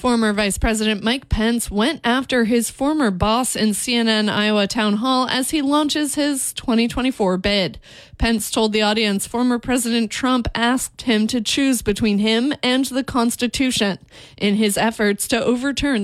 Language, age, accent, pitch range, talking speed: English, 30-49, American, 210-245 Hz, 155 wpm